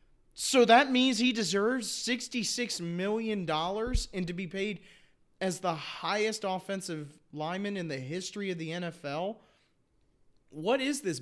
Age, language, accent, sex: 30-49, English, American, male